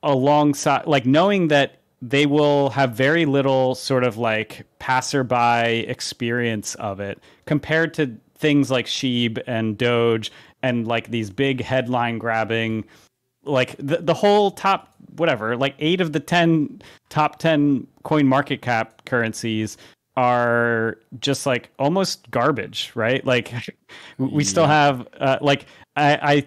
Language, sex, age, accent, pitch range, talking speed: English, male, 30-49, American, 115-145 Hz, 135 wpm